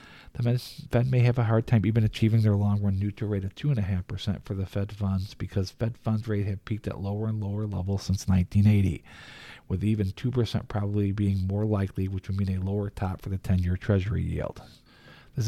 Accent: American